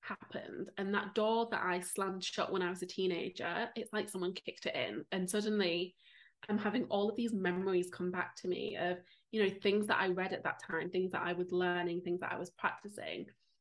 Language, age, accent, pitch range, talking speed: English, 20-39, British, 180-210 Hz, 225 wpm